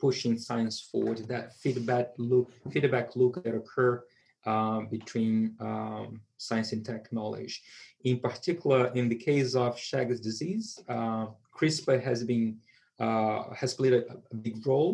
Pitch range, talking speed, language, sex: 115-130 Hz, 140 wpm, English, male